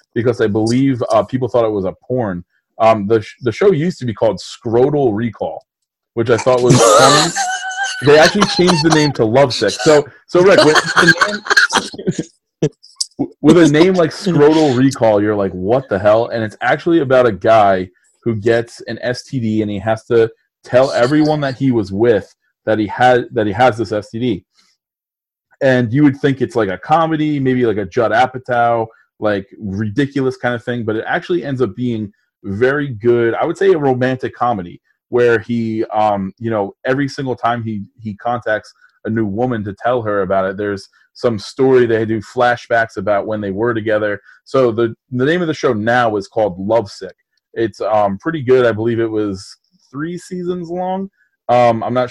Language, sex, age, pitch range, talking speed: English, male, 30-49, 105-135 Hz, 190 wpm